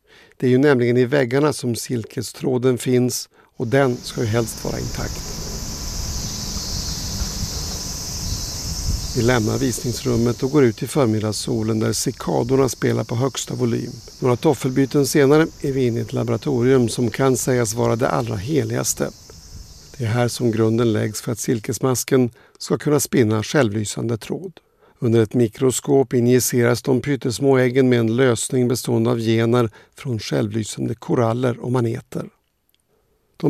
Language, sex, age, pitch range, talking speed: Swedish, male, 60-79, 115-130 Hz, 140 wpm